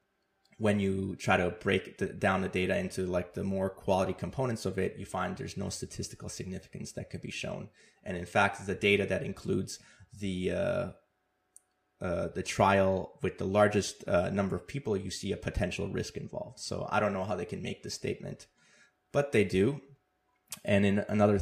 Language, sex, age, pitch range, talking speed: English, male, 20-39, 95-110 Hz, 190 wpm